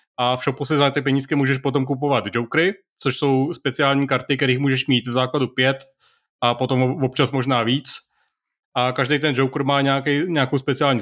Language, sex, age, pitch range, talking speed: Czech, male, 30-49, 130-145 Hz, 180 wpm